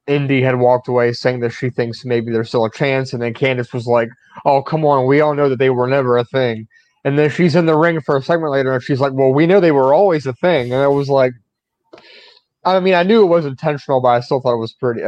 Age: 20-39